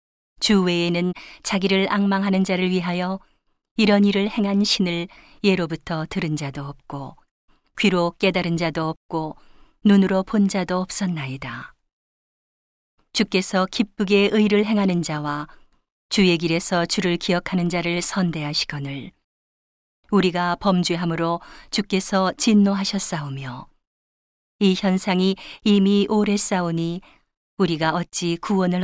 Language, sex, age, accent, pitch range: Korean, female, 40-59, native, 165-200 Hz